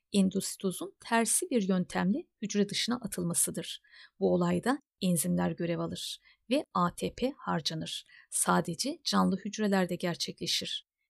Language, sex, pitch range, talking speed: Turkish, female, 180-240 Hz, 105 wpm